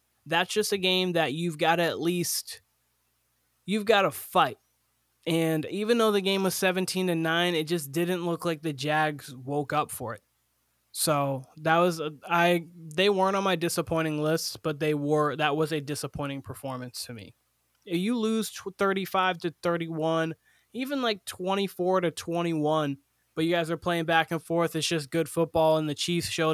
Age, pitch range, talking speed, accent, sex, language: 20-39, 150-175 Hz, 175 wpm, American, male, English